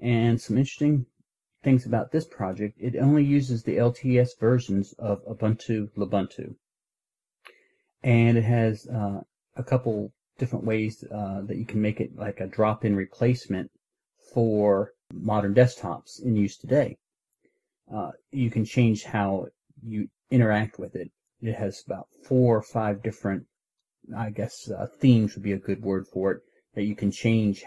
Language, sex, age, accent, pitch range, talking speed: English, male, 40-59, American, 100-115 Hz, 155 wpm